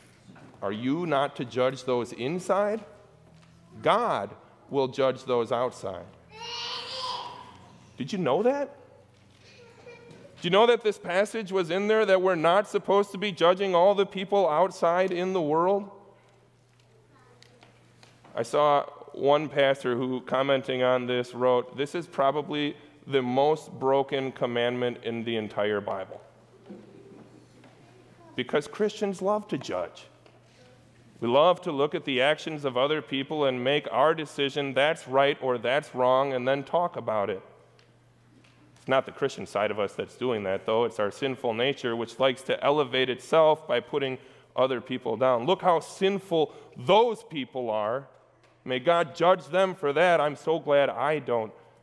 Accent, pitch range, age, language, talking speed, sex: American, 125-180 Hz, 30-49, English, 150 wpm, male